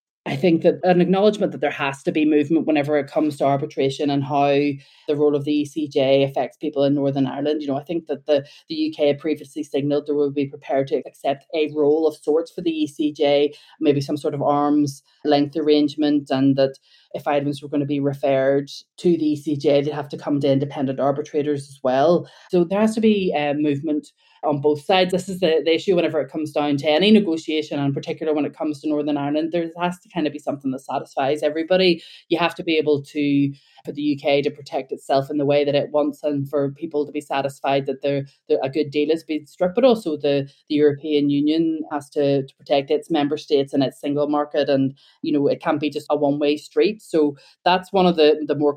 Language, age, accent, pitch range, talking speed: English, 20-39, Irish, 145-160 Hz, 235 wpm